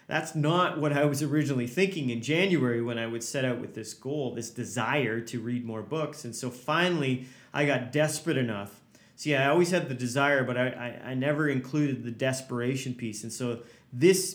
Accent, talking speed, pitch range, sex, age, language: American, 200 wpm, 120-145 Hz, male, 30-49, English